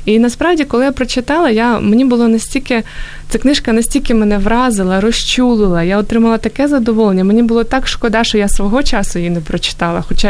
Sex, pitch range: female, 190-230 Hz